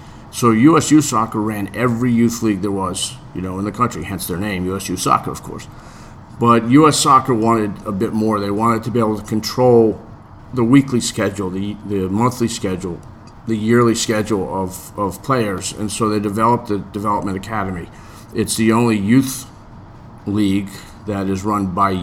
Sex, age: male, 40-59